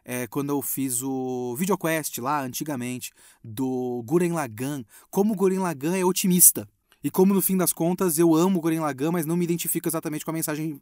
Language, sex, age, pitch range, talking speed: Portuguese, male, 20-39, 135-185 Hz, 195 wpm